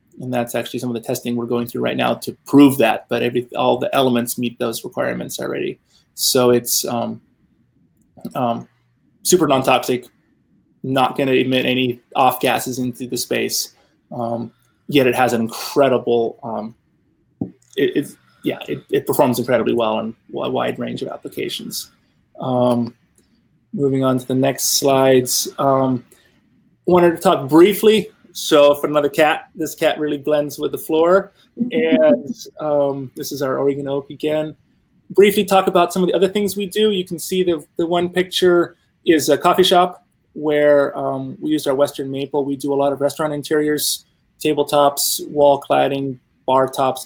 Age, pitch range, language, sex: 20-39, 125-155 Hz, English, male